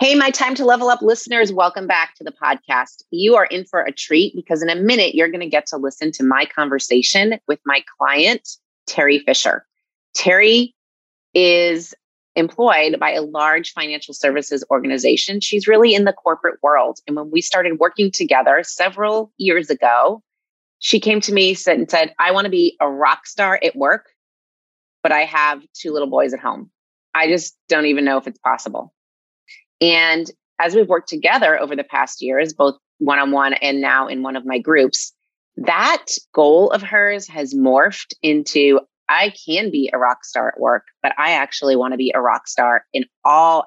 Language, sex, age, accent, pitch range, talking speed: English, female, 30-49, American, 145-205 Hz, 185 wpm